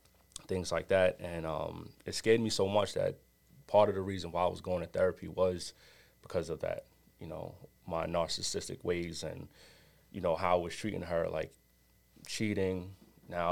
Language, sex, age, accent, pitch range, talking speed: English, male, 30-49, American, 85-95 Hz, 180 wpm